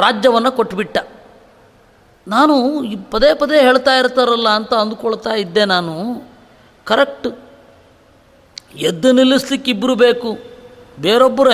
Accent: native